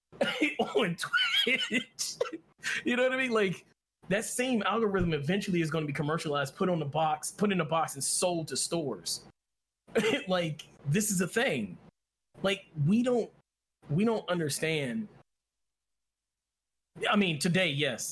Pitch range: 140-190 Hz